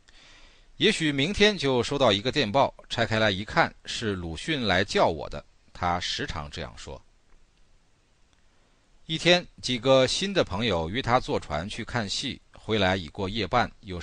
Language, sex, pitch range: Chinese, male, 90-140 Hz